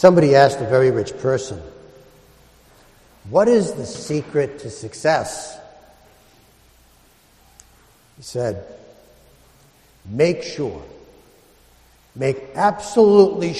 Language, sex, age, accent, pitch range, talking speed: English, male, 60-79, American, 110-150 Hz, 80 wpm